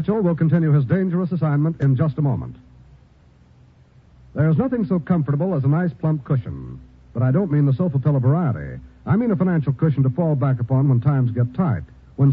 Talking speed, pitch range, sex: 200 wpm, 130-170 Hz, male